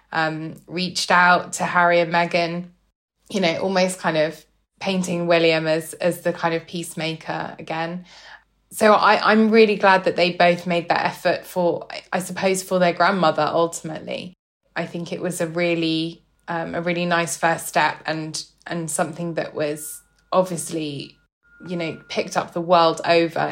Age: 10-29